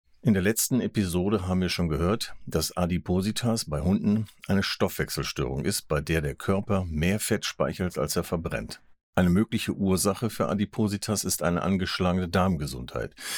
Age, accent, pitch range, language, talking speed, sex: 50-69, German, 80-105 Hz, German, 155 wpm, male